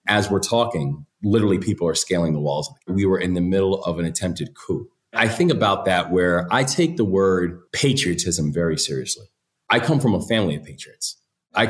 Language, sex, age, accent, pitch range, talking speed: English, male, 30-49, American, 90-110 Hz, 195 wpm